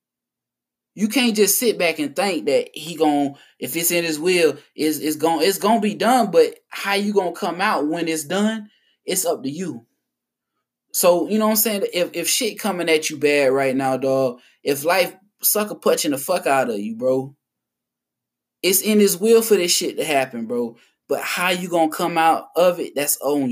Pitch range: 145-215 Hz